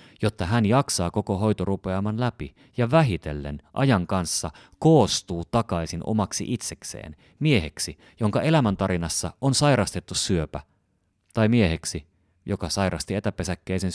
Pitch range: 85-110 Hz